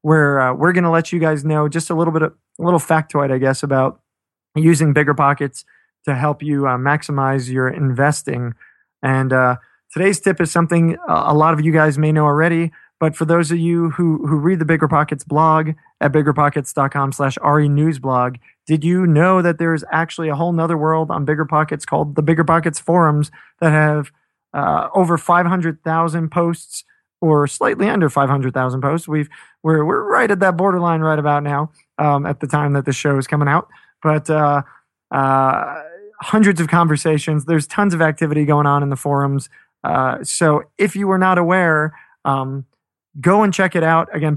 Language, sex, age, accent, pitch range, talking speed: English, male, 20-39, American, 145-170 Hz, 180 wpm